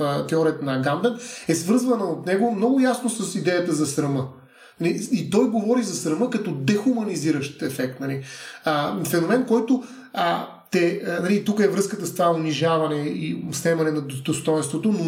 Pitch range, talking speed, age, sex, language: 155-205 Hz, 150 wpm, 30-49, male, Bulgarian